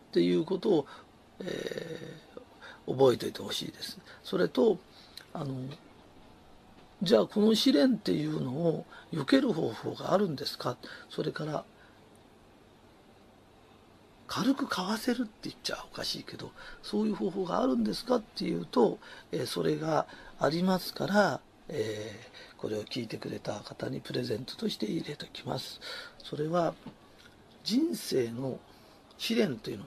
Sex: male